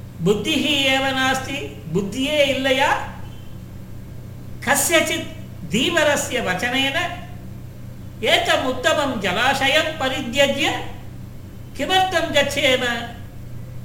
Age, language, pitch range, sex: 50-69, Tamil, 215-280 Hz, male